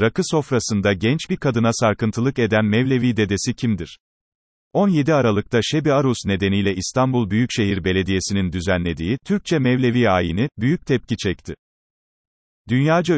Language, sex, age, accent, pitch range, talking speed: Turkish, male, 40-59, native, 100-130 Hz, 120 wpm